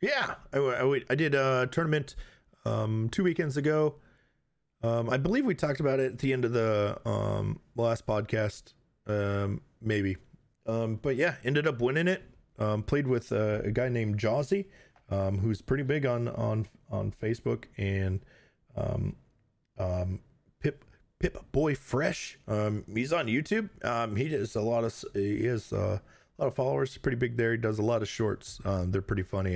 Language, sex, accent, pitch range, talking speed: English, male, American, 100-130 Hz, 175 wpm